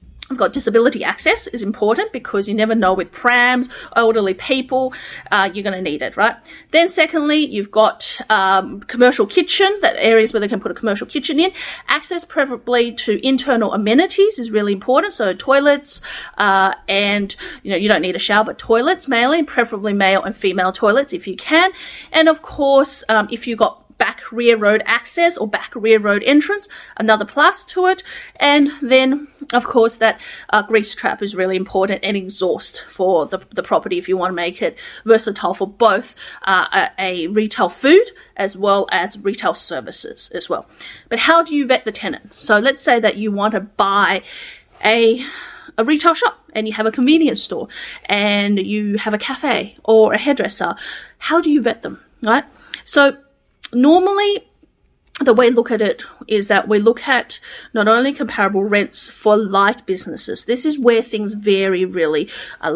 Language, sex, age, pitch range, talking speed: English, female, 30-49, 205-285 Hz, 185 wpm